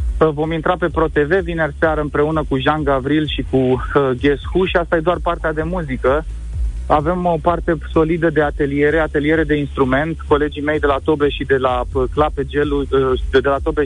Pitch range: 140-165 Hz